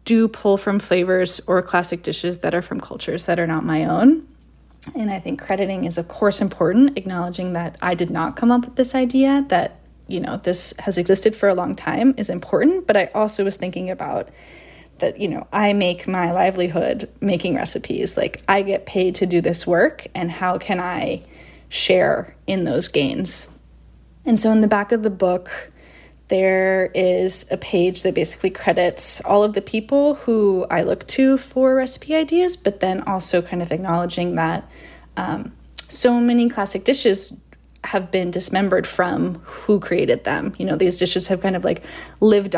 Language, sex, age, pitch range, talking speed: English, female, 10-29, 180-220 Hz, 185 wpm